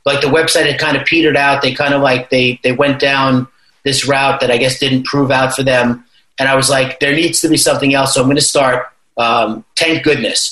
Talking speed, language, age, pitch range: 250 wpm, English, 30-49, 130-150 Hz